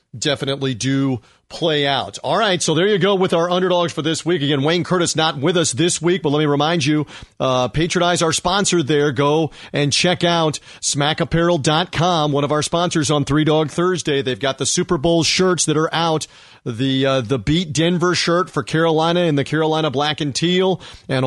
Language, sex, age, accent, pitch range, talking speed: English, male, 40-59, American, 145-175 Hz, 200 wpm